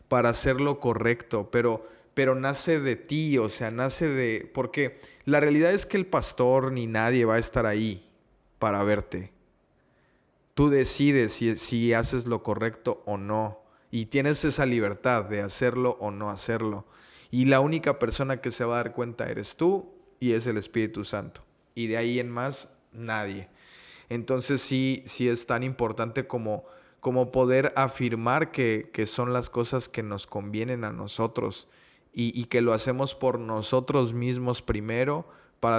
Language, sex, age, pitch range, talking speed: Spanish, male, 20-39, 115-135 Hz, 165 wpm